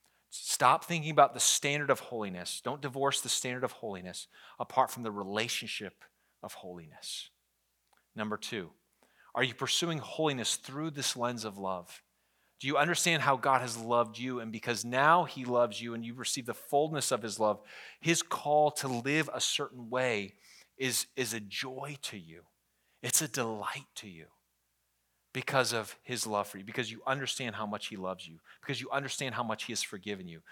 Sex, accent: male, American